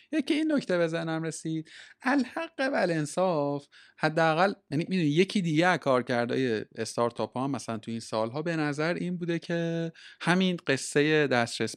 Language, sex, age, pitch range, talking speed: Persian, male, 30-49, 125-165 Hz, 155 wpm